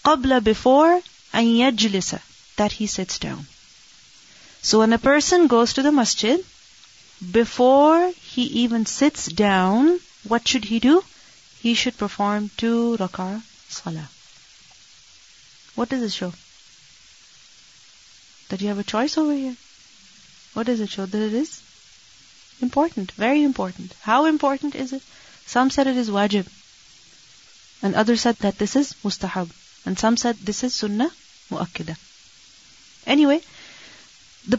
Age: 30-49